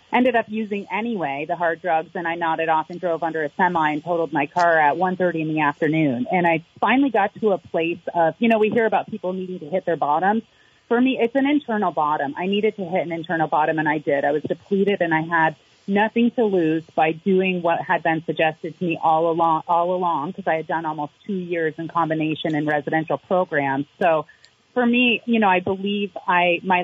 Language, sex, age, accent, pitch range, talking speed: English, female, 30-49, American, 160-200 Hz, 230 wpm